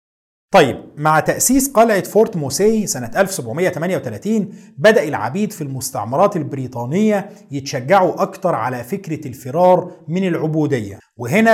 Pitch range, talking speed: 140-205 Hz, 110 wpm